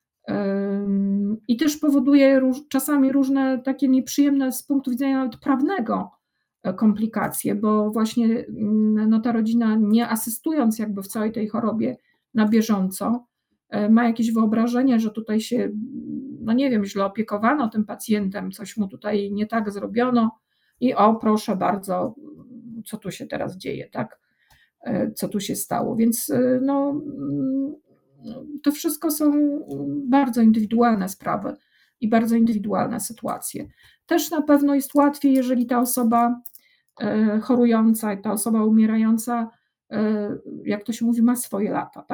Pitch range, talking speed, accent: 215-255 Hz, 125 wpm, native